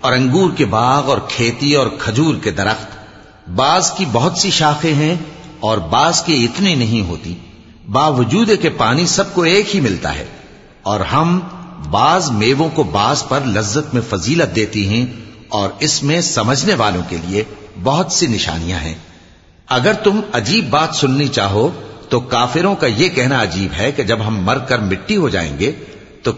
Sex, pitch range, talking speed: male, 105-155 Hz, 165 wpm